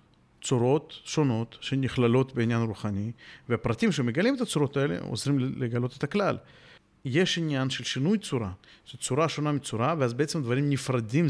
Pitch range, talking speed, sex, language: 115-145 Hz, 145 wpm, male, Hebrew